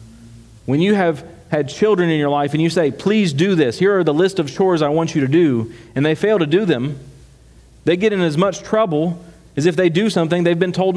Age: 40-59